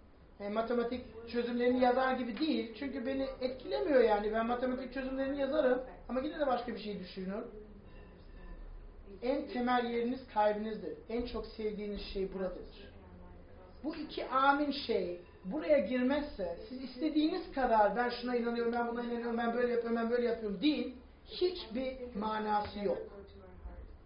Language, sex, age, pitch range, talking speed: Turkish, male, 40-59, 190-260 Hz, 135 wpm